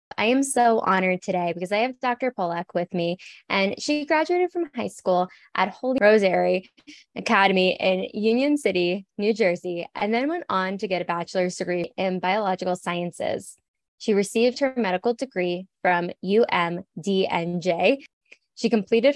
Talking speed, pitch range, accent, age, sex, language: 150 wpm, 180-230 Hz, American, 10-29, female, English